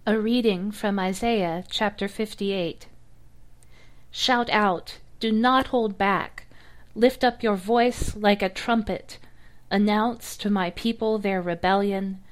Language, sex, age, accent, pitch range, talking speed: English, female, 40-59, American, 180-215 Hz, 125 wpm